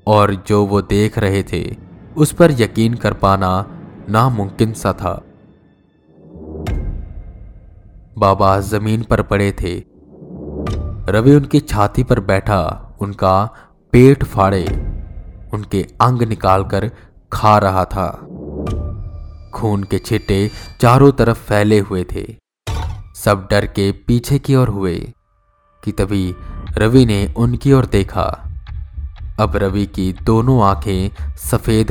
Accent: native